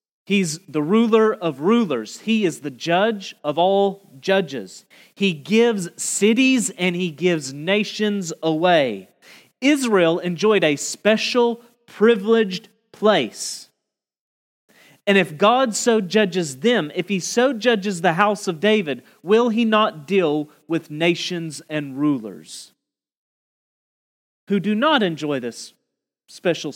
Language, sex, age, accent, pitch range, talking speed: English, male, 40-59, American, 175-240 Hz, 120 wpm